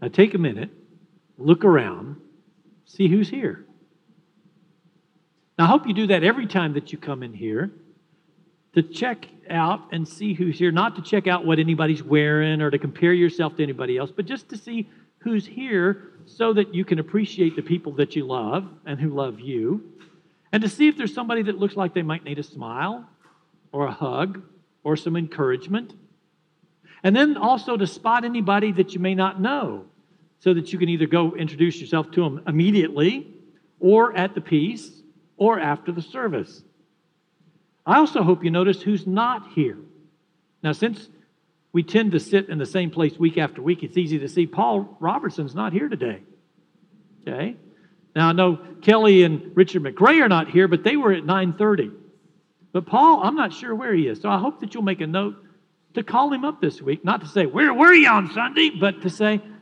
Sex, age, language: male, 50-69, English